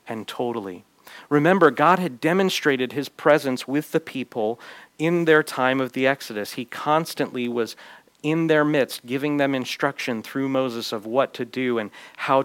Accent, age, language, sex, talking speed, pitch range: American, 40-59, English, male, 165 wpm, 120-150 Hz